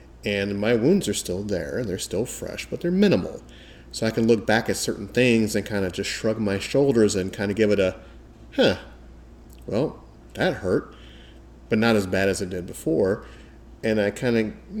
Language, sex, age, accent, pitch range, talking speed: English, male, 30-49, American, 95-110 Hz, 205 wpm